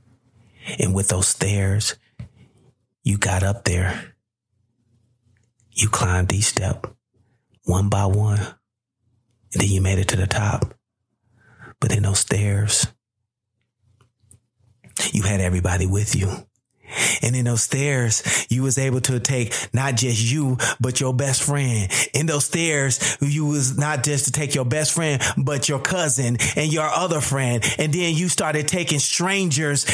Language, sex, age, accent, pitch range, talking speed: English, male, 30-49, American, 120-180 Hz, 145 wpm